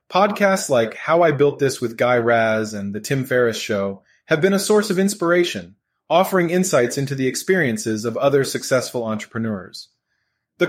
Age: 30-49